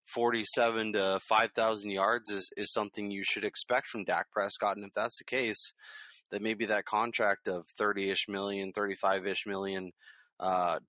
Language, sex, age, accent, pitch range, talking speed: English, male, 20-39, American, 100-115 Hz, 165 wpm